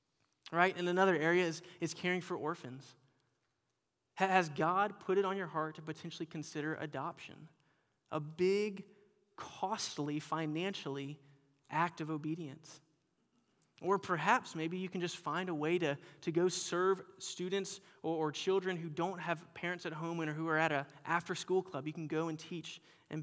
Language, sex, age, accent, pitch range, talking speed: English, male, 20-39, American, 150-175 Hz, 165 wpm